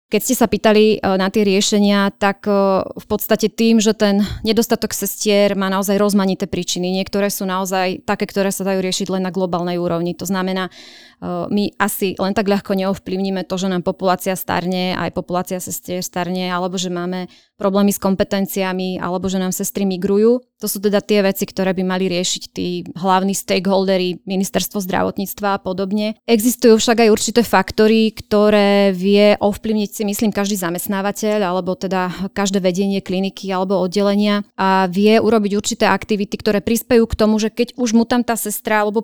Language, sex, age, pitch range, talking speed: Slovak, female, 20-39, 190-210 Hz, 170 wpm